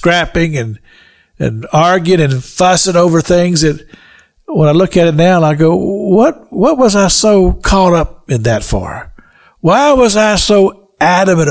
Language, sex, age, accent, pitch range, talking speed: English, male, 60-79, American, 130-205 Hz, 160 wpm